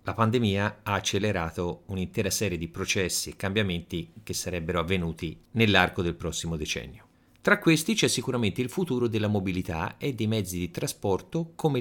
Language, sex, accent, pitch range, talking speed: Italian, male, native, 90-120 Hz, 160 wpm